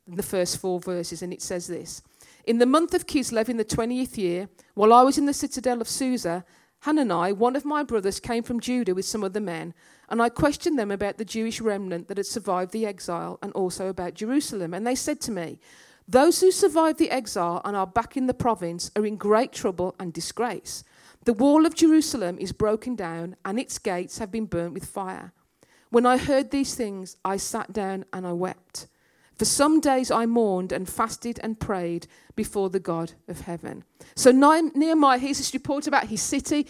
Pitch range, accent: 195-270 Hz, British